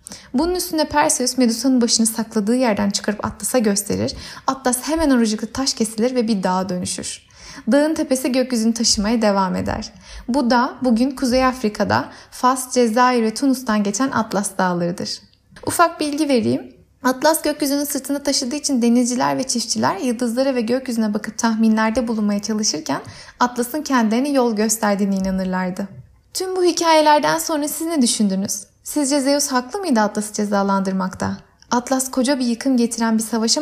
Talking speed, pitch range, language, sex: 145 wpm, 220-275 Hz, Turkish, female